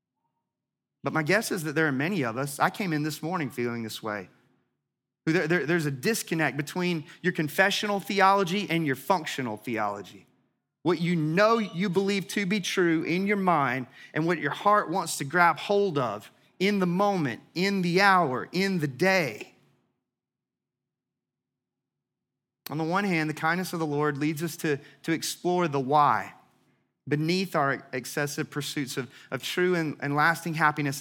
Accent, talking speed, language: American, 165 wpm, English